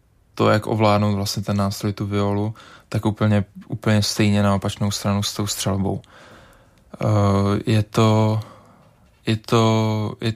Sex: male